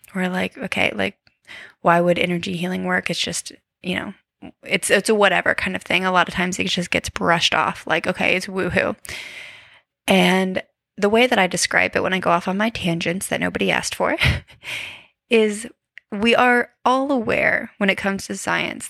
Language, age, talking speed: English, 20-39, 195 wpm